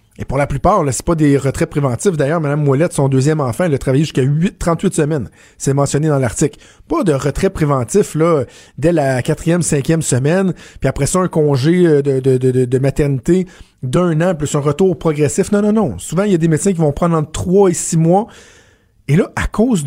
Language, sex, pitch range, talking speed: French, male, 140-185 Hz, 225 wpm